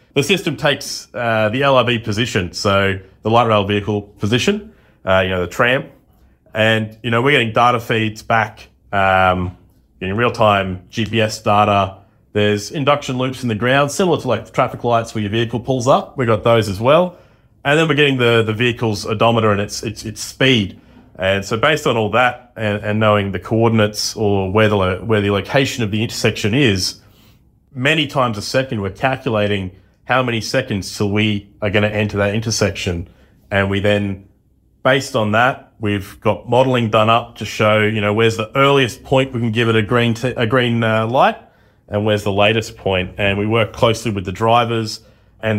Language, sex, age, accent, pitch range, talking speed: English, male, 30-49, Australian, 105-125 Hz, 195 wpm